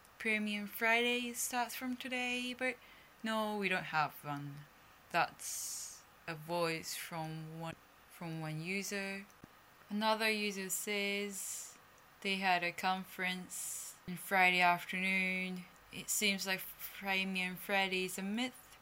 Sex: female